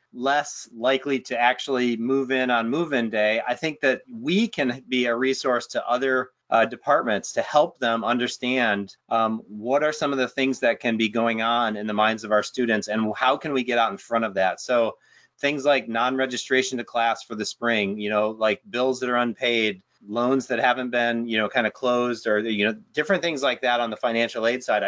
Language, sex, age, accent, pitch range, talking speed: English, male, 30-49, American, 115-135 Hz, 215 wpm